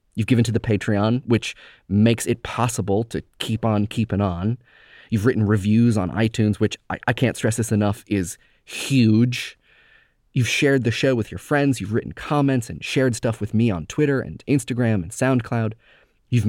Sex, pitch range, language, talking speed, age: male, 100-125 Hz, English, 180 wpm, 30-49